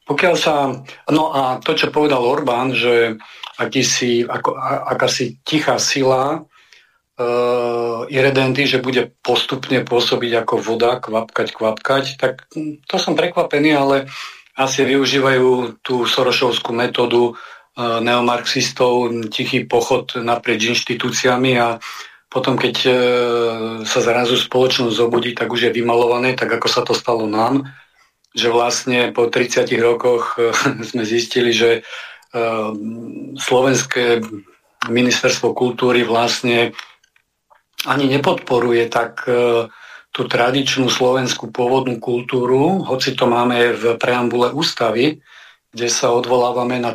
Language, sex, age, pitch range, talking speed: Slovak, male, 40-59, 120-130 Hz, 115 wpm